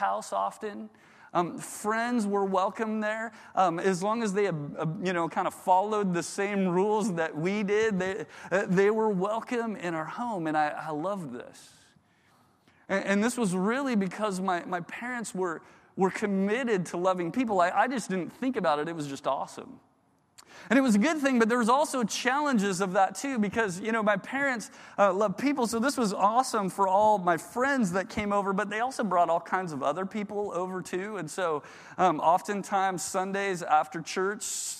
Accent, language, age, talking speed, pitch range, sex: American, English, 30-49, 195 wpm, 175-215 Hz, male